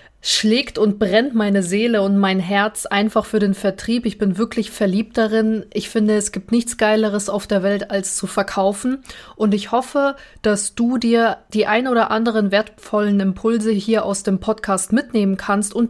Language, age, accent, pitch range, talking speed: German, 20-39, German, 200-235 Hz, 180 wpm